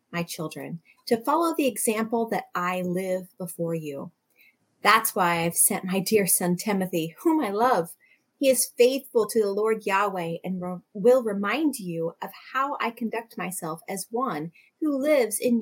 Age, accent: 30-49, American